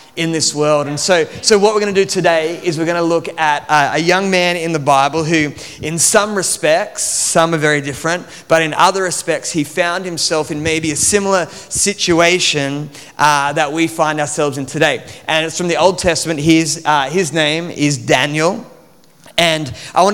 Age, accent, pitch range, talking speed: 30-49, Australian, 145-175 Hz, 200 wpm